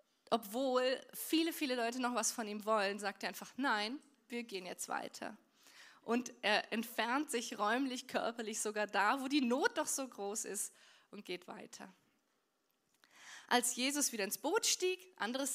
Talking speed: 160 wpm